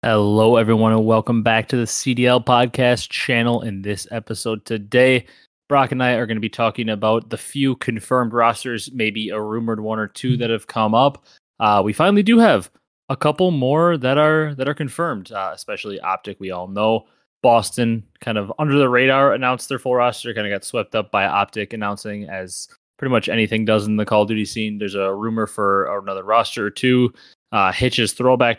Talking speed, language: 200 wpm, English